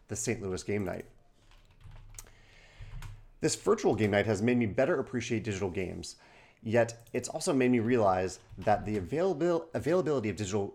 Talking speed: 150 wpm